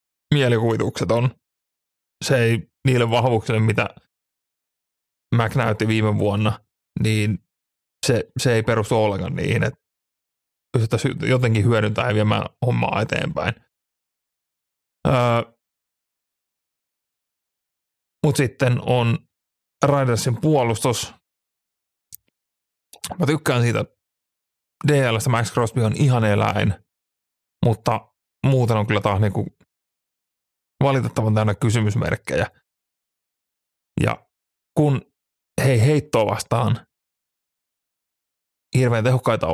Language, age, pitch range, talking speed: Finnish, 30-49, 110-130 Hz, 90 wpm